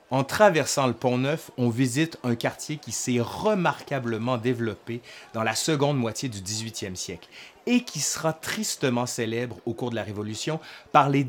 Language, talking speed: French, 165 wpm